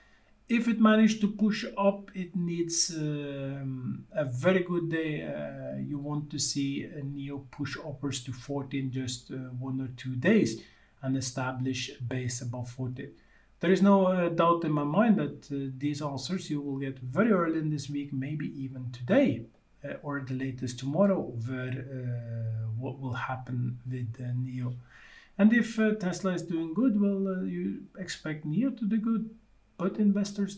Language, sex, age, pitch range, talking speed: English, male, 50-69, 130-185 Hz, 175 wpm